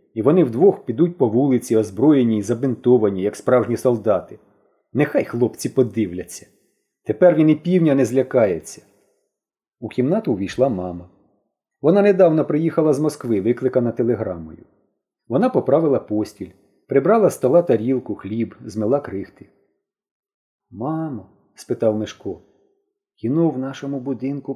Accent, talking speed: native, 120 wpm